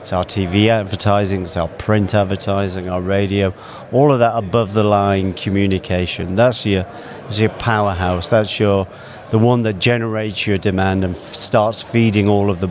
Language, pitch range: English, 95-110 Hz